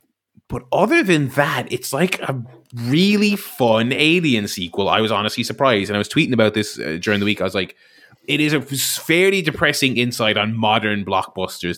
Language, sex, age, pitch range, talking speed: English, male, 20-39, 100-130 Hz, 190 wpm